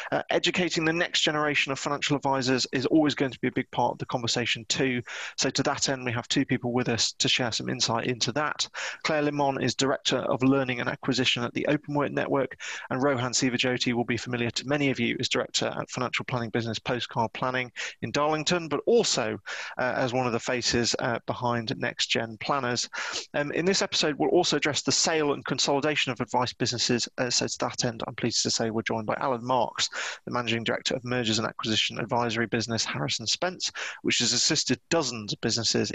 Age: 30-49